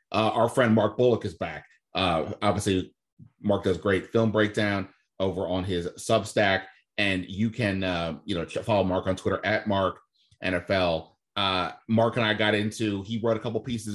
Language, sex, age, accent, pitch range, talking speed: English, male, 30-49, American, 95-110 Hz, 180 wpm